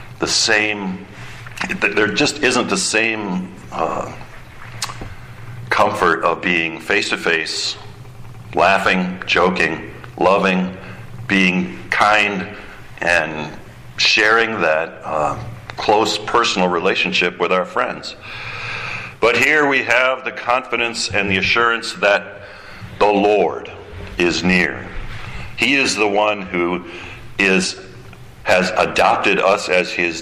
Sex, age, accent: male, 60-79, American